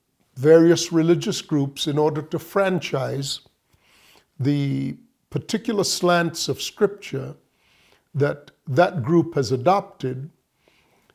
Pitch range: 145-190 Hz